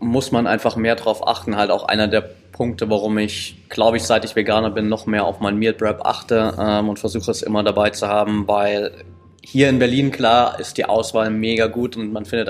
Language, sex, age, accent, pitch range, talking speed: German, male, 20-39, German, 105-115 Hz, 220 wpm